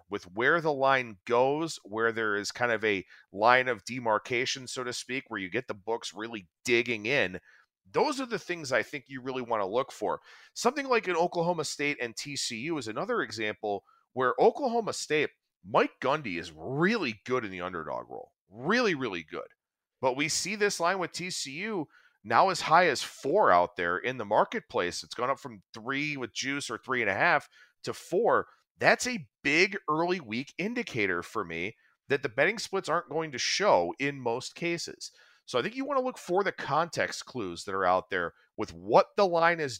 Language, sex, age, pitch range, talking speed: English, male, 40-59, 110-160 Hz, 200 wpm